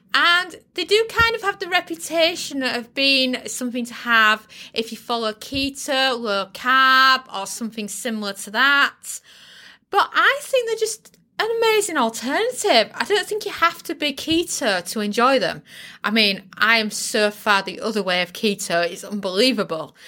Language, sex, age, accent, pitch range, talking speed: English, female, 20-39, British, 205-260 Hz, 165 wpm